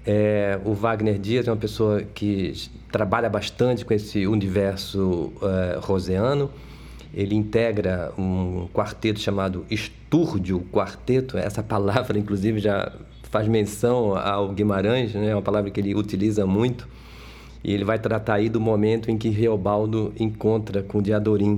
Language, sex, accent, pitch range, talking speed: Portuguese, male, Brazilian, 95-115 Hz, 140 wpm